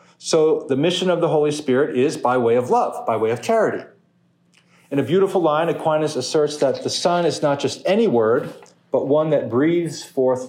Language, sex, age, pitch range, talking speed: English, male, 40-59, 125-165 Hz, 200 wpm